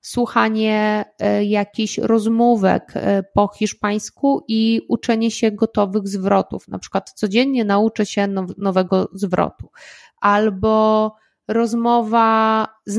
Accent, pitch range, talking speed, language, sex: native, 195-225 Hz, 90 wpm, Polish, female